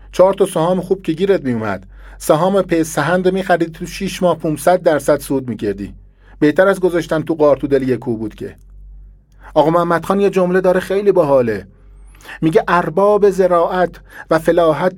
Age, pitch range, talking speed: 40-59, 135-190 Hz, 155 wpm